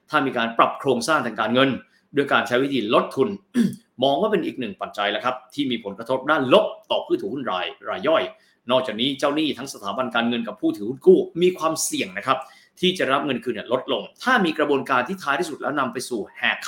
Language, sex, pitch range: Thai, male, 125-200 Hz